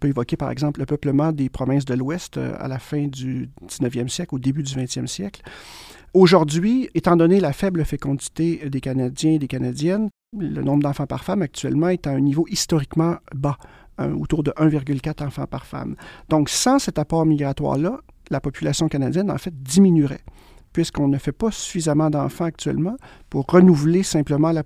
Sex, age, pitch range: male, 40-59, 135-165 Hz